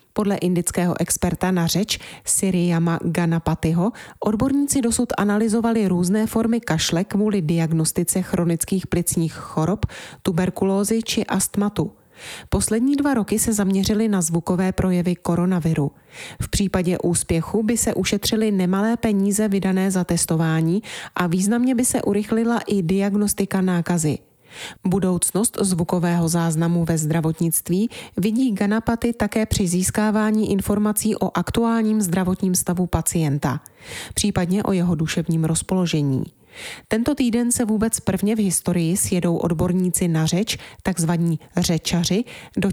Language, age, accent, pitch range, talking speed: Czech, 30-49, native, 170-210 Hz, 120 wpm